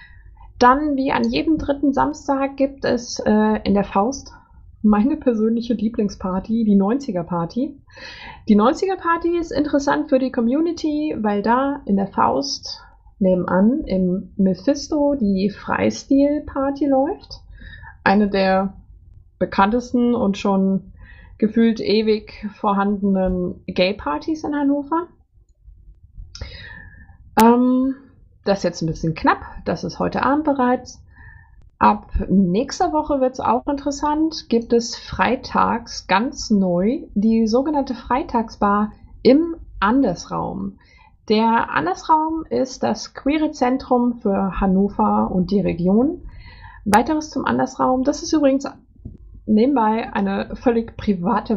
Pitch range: 195-275 Hz